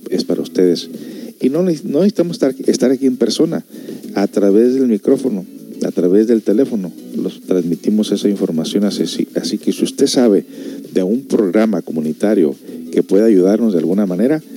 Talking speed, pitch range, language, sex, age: 165 wpm, 90-125 Hz, Spanish, male, 50-69